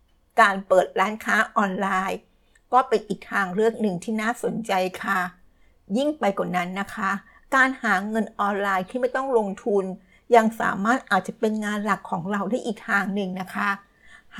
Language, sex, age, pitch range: Thai, female, 60-79, 195-230 Hz